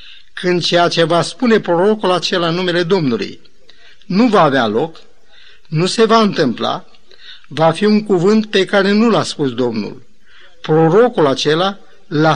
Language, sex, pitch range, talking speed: Romanian, male, 150-195 Hz, 150 wpm